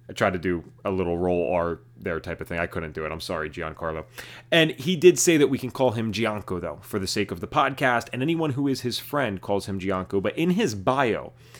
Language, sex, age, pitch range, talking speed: English, male, 30-49, 105-140 Hz, 255 wpm